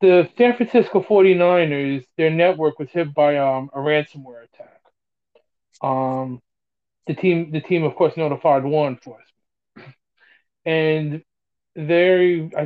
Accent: American